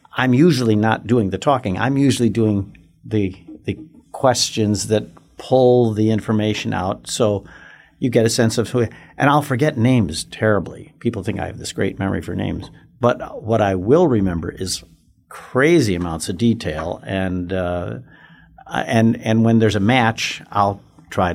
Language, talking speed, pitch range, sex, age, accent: English, 165 wpm, 95-120 Hz, male, 50-69, American